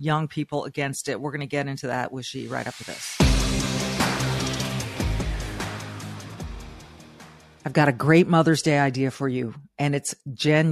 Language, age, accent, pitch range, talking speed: English, 40-59, American, 145-175 Hz, 150 wpm